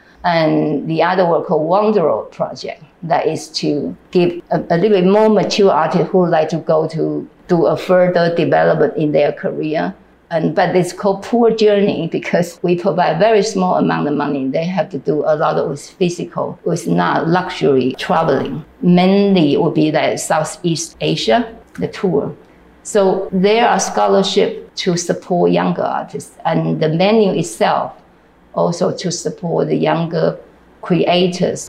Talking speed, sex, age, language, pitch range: 160 wpm, female, 50-69, English, 165-200 Hz